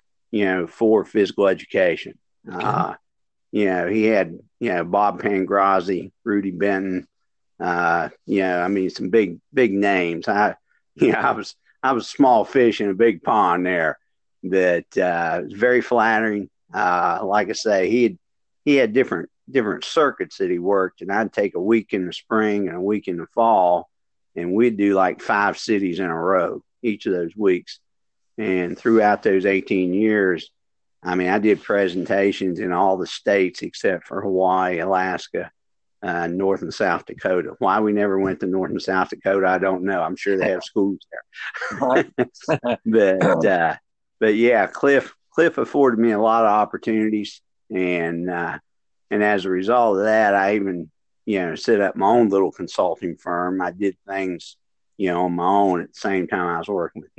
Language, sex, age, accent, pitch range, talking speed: English, male, 50-69, American, 90-105 Hz, 185 wpm